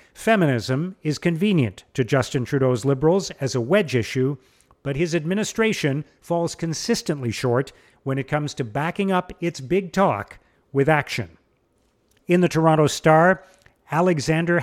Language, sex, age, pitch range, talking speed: English, male, 50-69, 135-180 Hz, 135 wpm